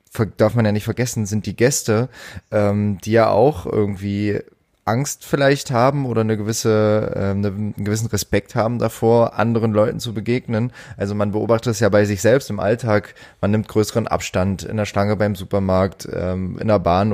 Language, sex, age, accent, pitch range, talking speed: German, male, 20-39, German, 105-120 Hz, 180 wpm